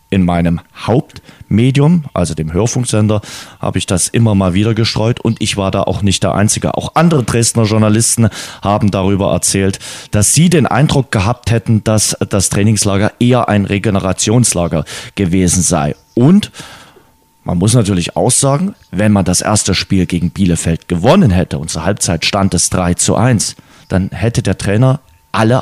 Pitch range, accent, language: 95-115 Hz, German, German